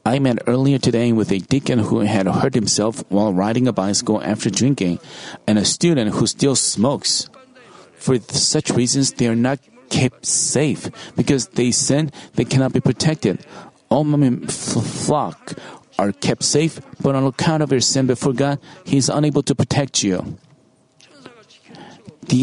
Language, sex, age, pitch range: Korean, male, 40-59, 115-145 Hz